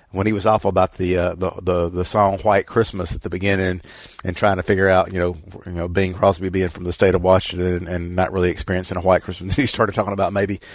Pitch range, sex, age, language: 90-100 Hz, male, 40-59, English